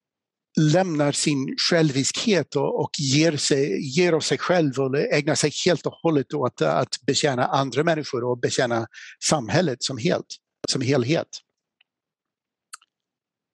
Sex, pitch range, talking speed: male, 140-180 Hz, 115 wpm